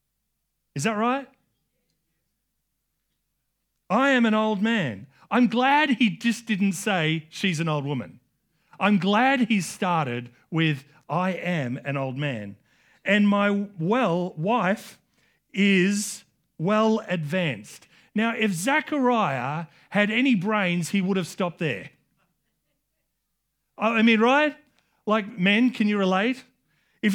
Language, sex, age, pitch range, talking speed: English, male, 40-59, 150-220 Hz, 120 wpm